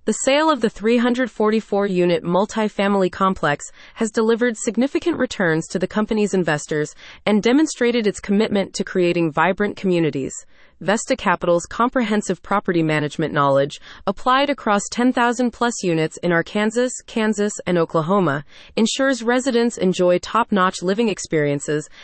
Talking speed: 120 wpm